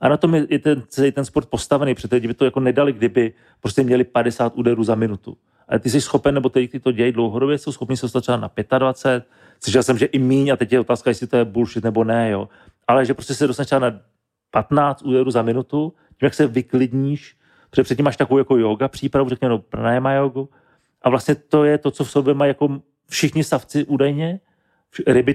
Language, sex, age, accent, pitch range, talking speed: Czech, male, 40-59, native, 120-140 Hz, 220 wpm